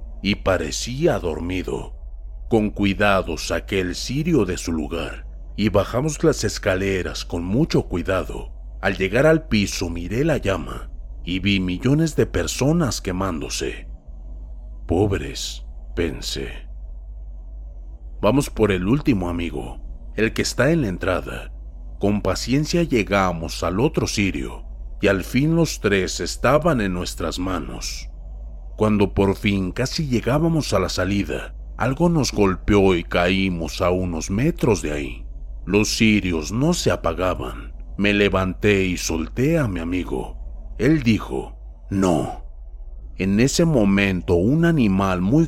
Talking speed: 130 wpm